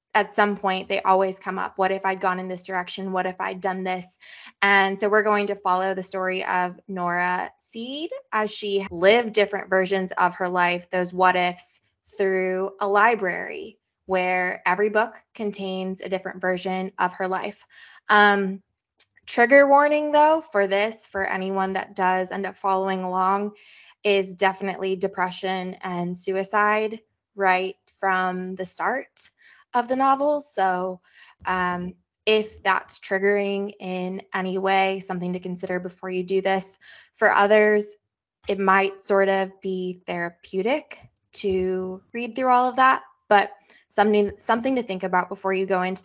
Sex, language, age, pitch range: female, English, 20-39, 185-215 Hz